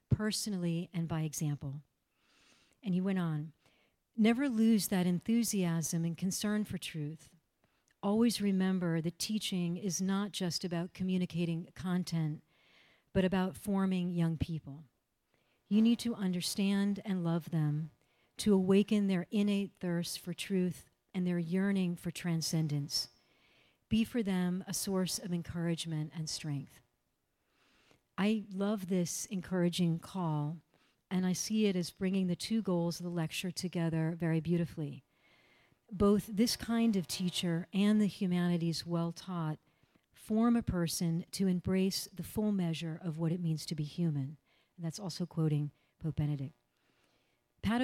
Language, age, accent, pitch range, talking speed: English, 50-69, American, 165-195 Hz, 140 wpm